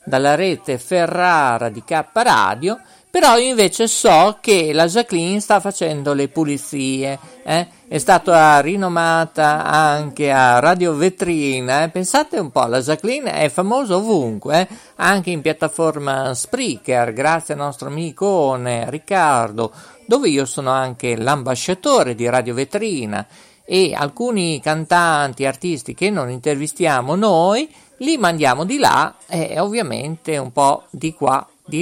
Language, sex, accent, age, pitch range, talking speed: Italian, male, native, 50-69, 140-195 Hz, 130 wpm